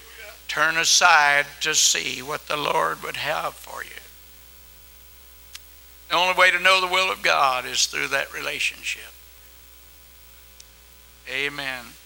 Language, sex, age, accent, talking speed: English, male, 60-79, American, 125 wpm